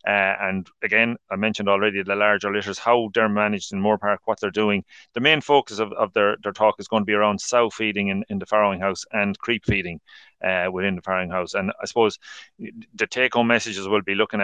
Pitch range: 100-115 Hz